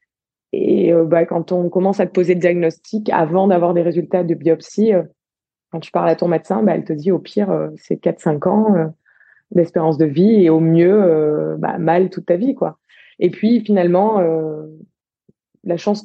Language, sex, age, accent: French, female, 20-39, French